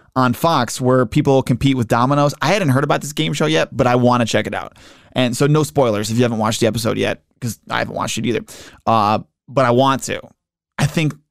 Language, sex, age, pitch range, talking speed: English, male, 20-39, 115-155 Hz, 245 wpm